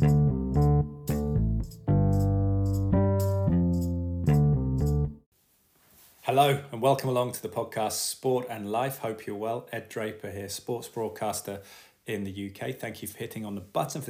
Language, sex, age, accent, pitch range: English, male, 30-49, British, 100-115 Hz